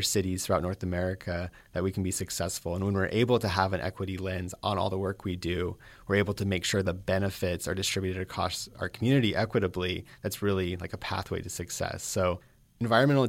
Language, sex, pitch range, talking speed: English, male, 95-110 Hz, 210 wpm